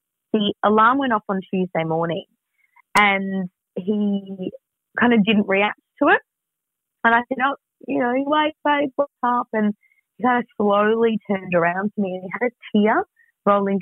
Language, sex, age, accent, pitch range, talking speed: English, female, 30-49, Australian, 185-235 Hz, 175 wpm